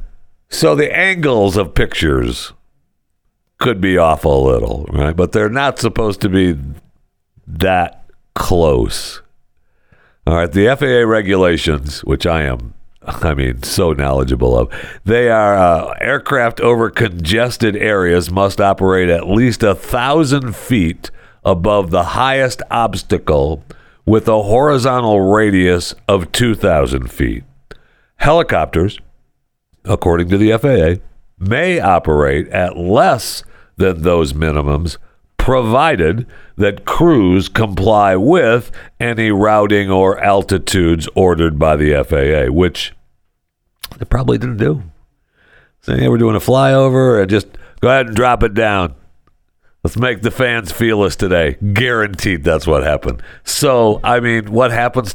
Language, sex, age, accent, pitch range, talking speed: English, male, 60-79, American, 85-115 Hz, 125 wpm